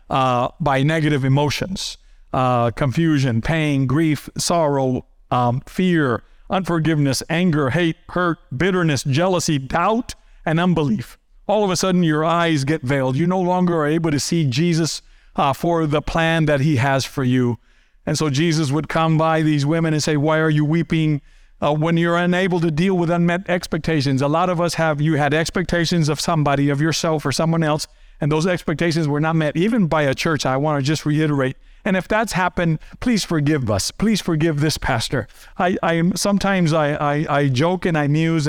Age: 50-69